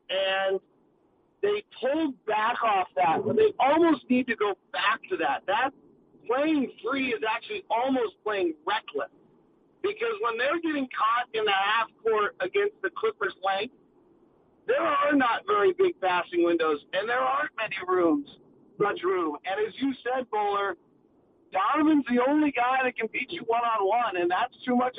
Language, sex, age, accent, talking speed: English, male, 50-69, American, 165 wpm